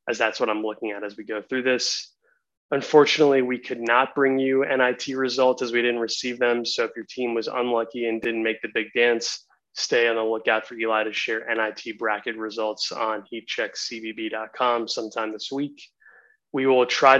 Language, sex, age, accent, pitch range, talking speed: English, male, 20-39, American, 115-130 Hz, 190 wpm